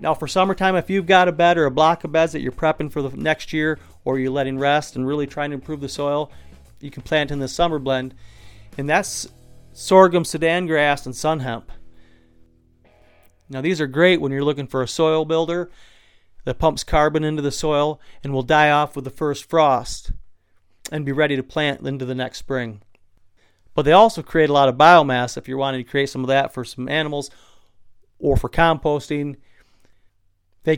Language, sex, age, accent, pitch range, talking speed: English, male, 40-59, American, 125-160 Hz, 200 wpm